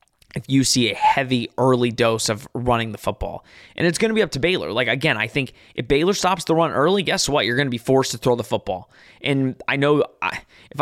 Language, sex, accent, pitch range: English, male, American, 120-150 Hz